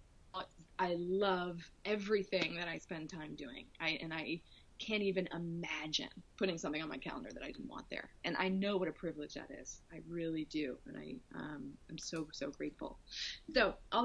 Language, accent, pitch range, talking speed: English, American, 165-200 Hz, 190 wpm